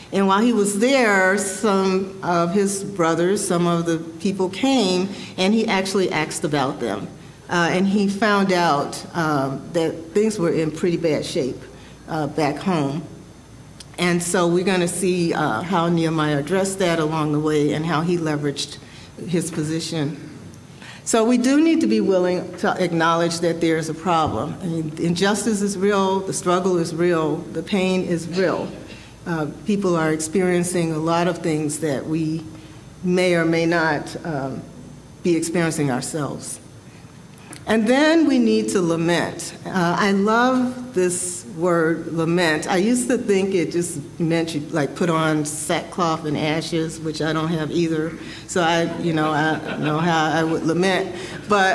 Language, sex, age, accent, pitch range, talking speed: English, female, 50-69, American, 160-190 Hz, 160 wpm